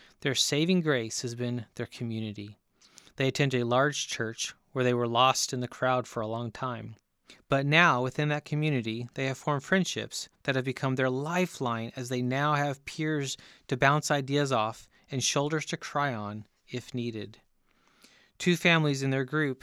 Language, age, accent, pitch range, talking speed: English, 30-49, American, 120-145 Hz, 175 wpm